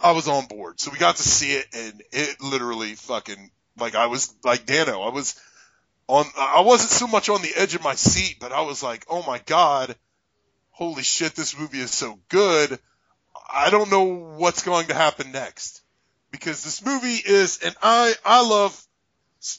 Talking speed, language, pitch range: 195 wpm, English, 135-200 Hz